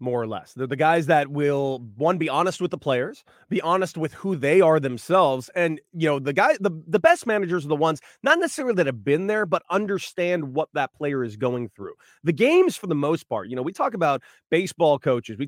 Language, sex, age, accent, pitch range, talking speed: English, male, 30-49, American, 140-185 Hz, 235 wpm